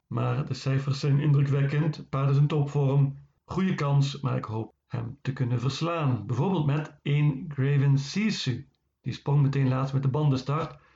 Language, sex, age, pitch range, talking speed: Dutch, male, 50-69, 130-150 Hz, 165 wpm